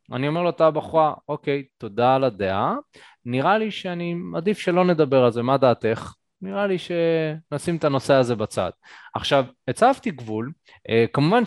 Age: 20-39